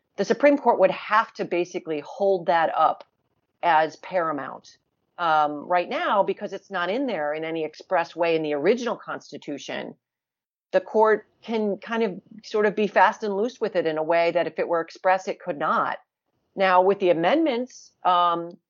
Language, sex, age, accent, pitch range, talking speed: English, female, 40-59, American, 170-215 Hz, 185 wpm